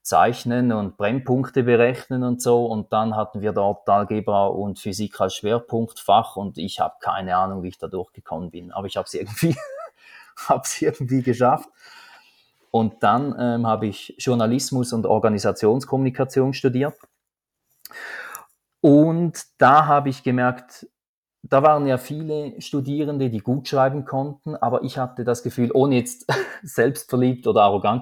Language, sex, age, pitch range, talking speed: German, male, 30-49, 105-130 Hz, 140 wpm